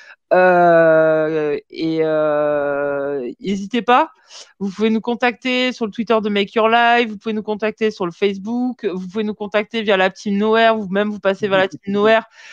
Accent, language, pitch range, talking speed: French, French, 190-235 Hz, 185 wpm